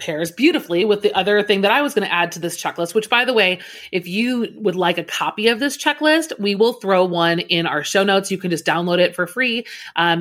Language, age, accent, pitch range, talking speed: English, 30-49, American, 175-215 Hz, 260 wpm